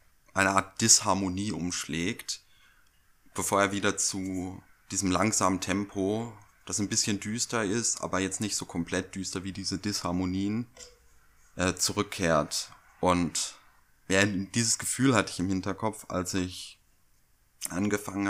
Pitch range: 90-100 Hz